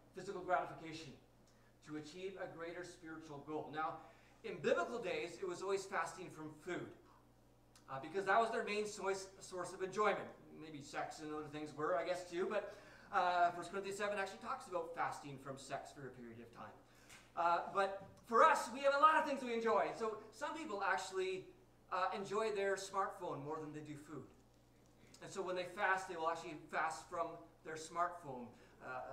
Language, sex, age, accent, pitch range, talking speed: English, male, 30-49, American, 150-195 Hz, 185 wpm